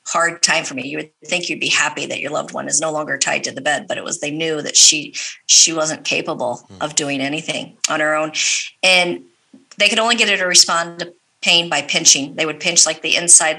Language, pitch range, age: English, 150-175 Hz, 40-59